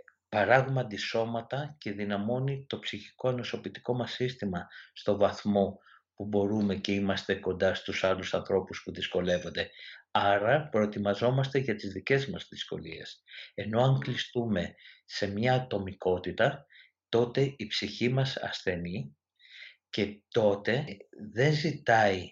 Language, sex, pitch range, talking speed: Greek, male, 100-125 Hz, 115 wpm